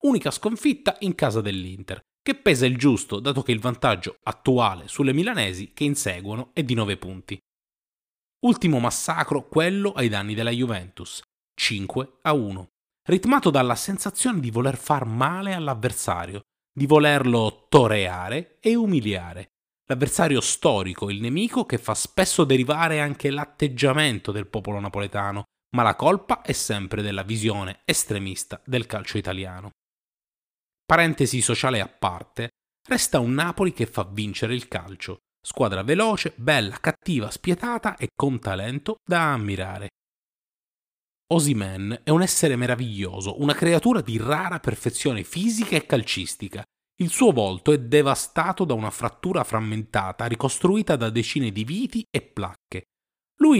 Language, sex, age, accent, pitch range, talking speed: Italian, male, 30-49, native, 105-160 Hz, 135 wpm